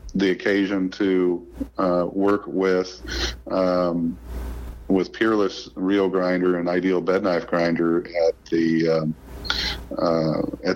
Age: 50-69